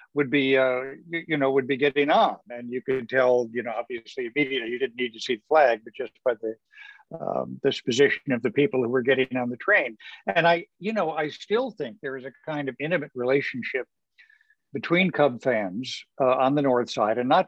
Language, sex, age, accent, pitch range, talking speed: English, male, 60-79, American, 120-145 Hz, 225 wpm